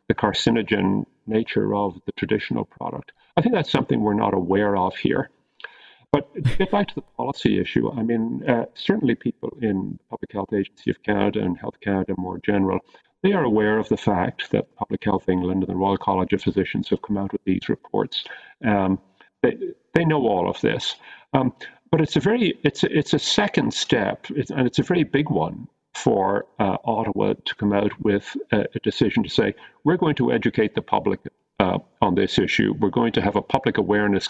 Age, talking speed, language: 50-69, 200 wpm, English